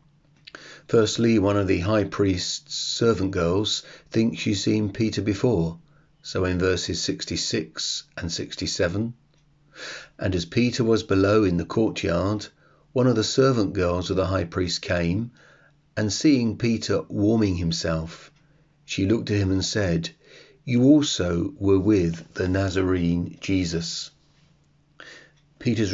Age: 40-59